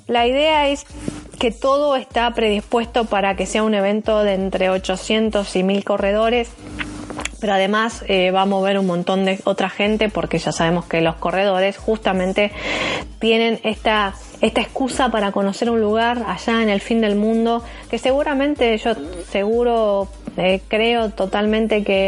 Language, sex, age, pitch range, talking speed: Spanish, female, 20-39, 195-230 Hz, 160 wpm